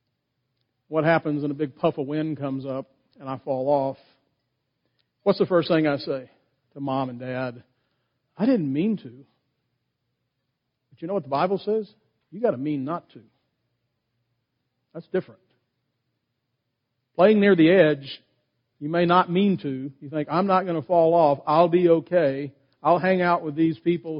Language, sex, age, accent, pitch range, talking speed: English, male, 50-69, American, 125-165 Hz, 170 wpm